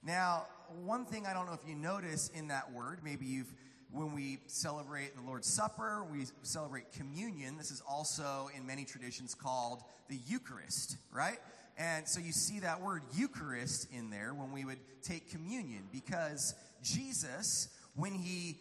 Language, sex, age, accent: English, male, 30-49, American